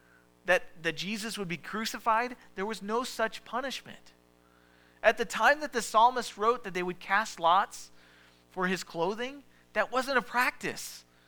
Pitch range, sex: 140-225 Hz, male